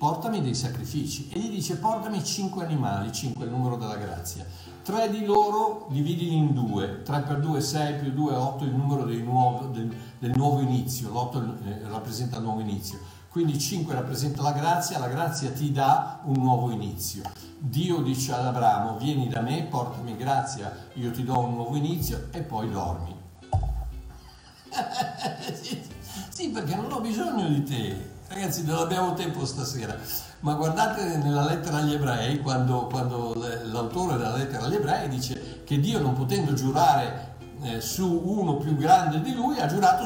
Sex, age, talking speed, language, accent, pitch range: male, 60-79, 170 wpm, Italian, native, 120-155 Hz